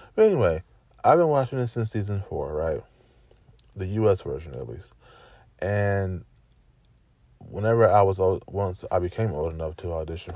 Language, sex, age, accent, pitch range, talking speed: English, male, 20-39, American, 90-110 Hz, 150 wpm